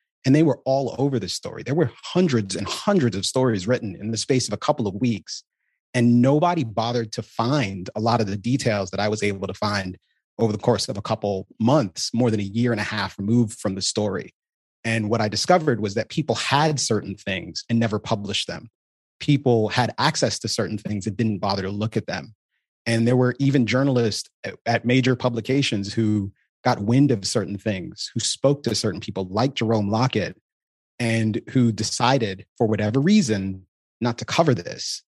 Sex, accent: male, American